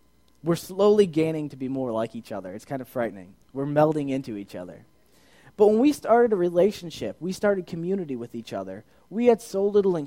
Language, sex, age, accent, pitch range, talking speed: English, male, 20-39, American, 120-160 Hz, 210 wpm